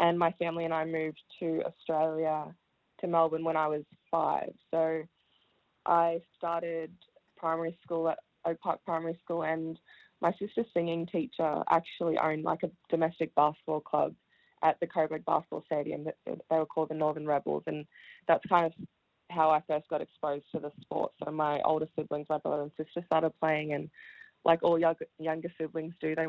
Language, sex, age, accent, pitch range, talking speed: English, female, 20-39, Australian, 155-170 Hz, 175 wpm